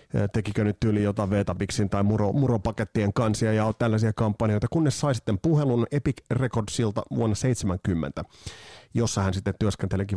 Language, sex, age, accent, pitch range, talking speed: Finnish, male, 30-49, native, 100-125 Hz, 140 wpm